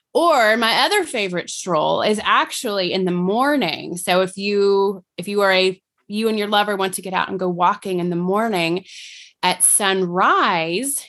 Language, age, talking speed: English, 20-39, 180 wpm